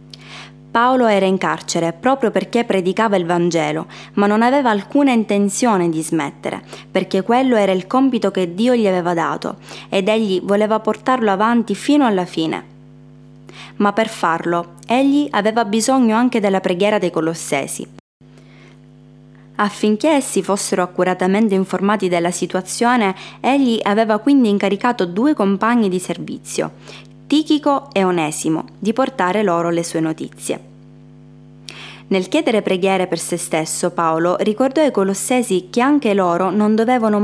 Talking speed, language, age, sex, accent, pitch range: 135 wpm, Italian, 20-39, female, native, 180-225 Hz